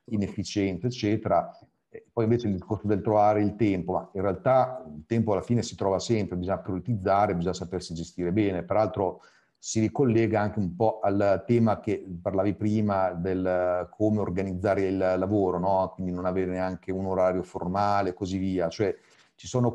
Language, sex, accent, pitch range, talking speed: Italian, male, native, 95-115 Hz, 170 wpm